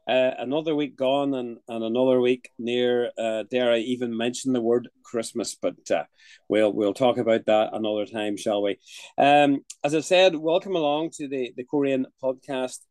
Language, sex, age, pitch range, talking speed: English, male, 30-49, 115-135 Hz, 180 wpm